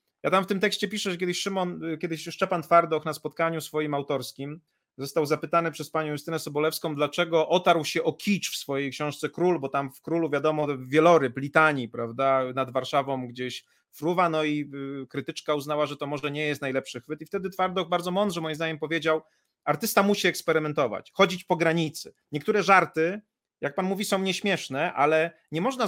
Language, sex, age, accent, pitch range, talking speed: Polish, male, 30-49, native, 150-190 Hz, 175 wpm